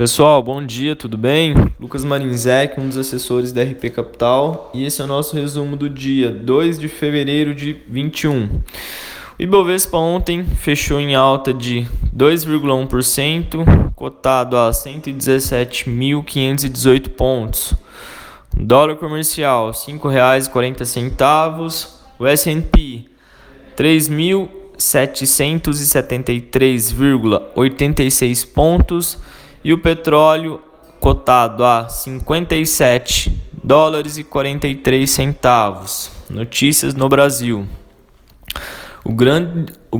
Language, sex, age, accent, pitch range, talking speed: Portuguese, male, 10-29, Brazilian, 125-150 Hz, 95 wpm